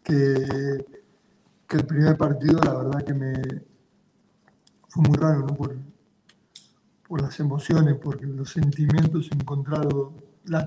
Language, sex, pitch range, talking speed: Spanish, male, 140-160 Hz, 125 wpm